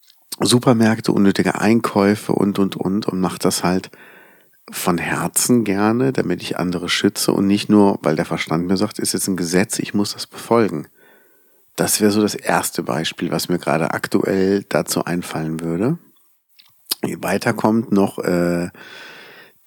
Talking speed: 155 wpm